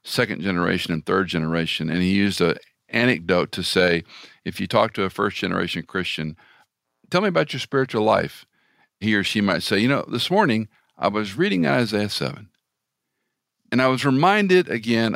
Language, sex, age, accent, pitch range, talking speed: English, male, 50-69, American, 90-120 Hz, 175 wpm